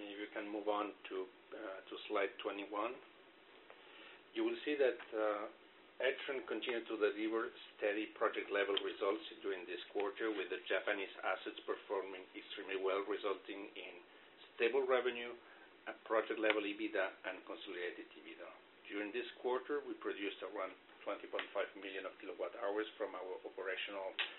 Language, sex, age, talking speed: English, male, 50-69, 135 wpm